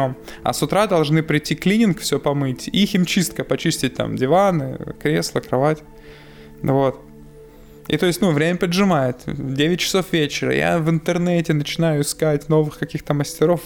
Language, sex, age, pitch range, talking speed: Russian, male, 20-39, 140-170 Hz, 150 wpm